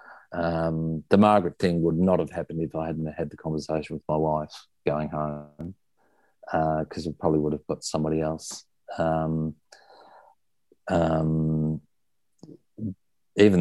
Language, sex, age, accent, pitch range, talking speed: English, male, 50-69, Australian, 80-95 Hz, 135 wpm